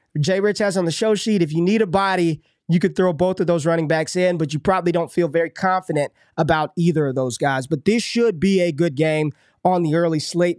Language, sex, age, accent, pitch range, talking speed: English, male, 20-39, American, 165-195 Hz, 250 wpm